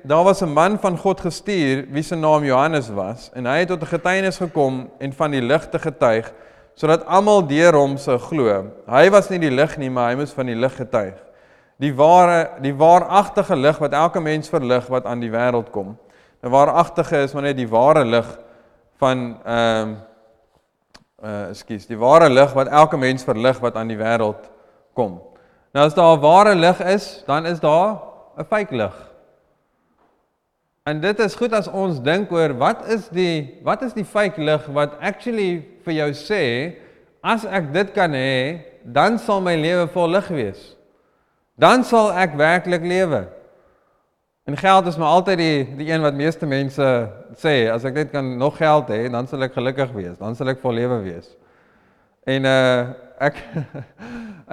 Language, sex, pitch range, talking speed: English, male, 125-180 Hz, 180 wpm